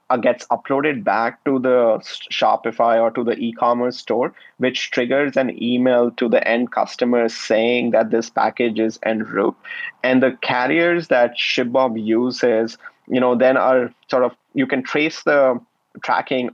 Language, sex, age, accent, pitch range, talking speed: English, male, 30-49, Indian, 115-130 Hz, 155 wpm